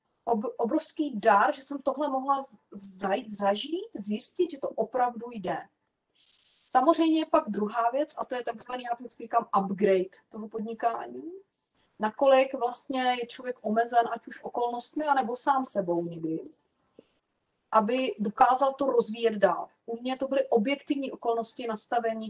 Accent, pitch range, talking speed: native, 205-255 Hz, 130 wpm